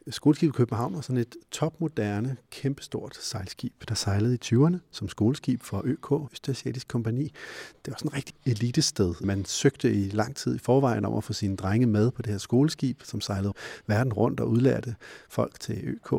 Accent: native